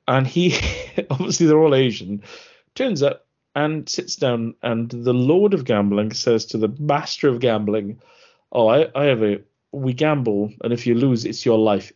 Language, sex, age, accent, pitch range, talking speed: English, male, 40-59, British, 110-155 Hz, 180 wpm